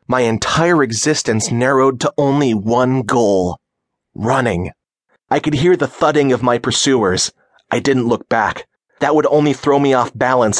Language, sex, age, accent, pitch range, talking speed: English, male, 30-49, American, 115-145 Hz, 160 wpm